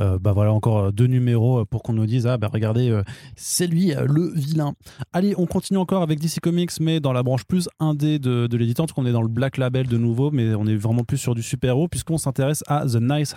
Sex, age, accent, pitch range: male, 20-39, French, 105-135 Hz